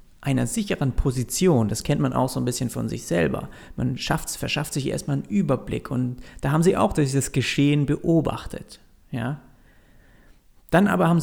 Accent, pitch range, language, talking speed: German, 130-165 Hz, German, 165 wpm